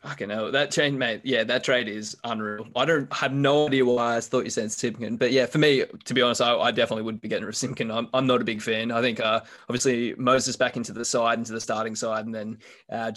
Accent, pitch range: Australian, 110-125 Hz